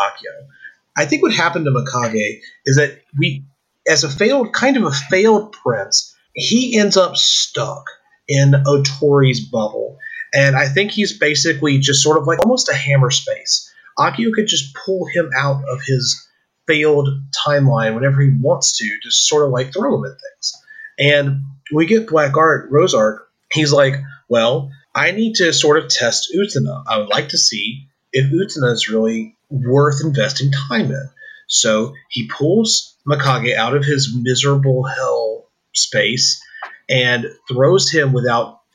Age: 30-49